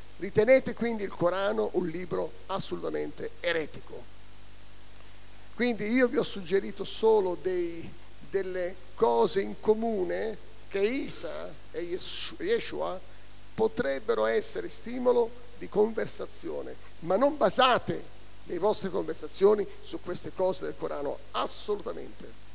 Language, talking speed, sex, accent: Italian, 105 wpm, male, native